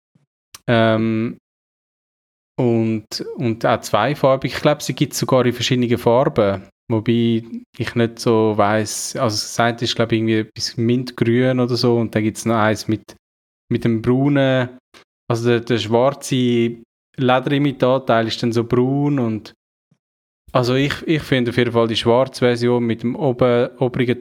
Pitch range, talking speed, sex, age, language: 110-130 Hz, 155 wpm, male, 20-39, German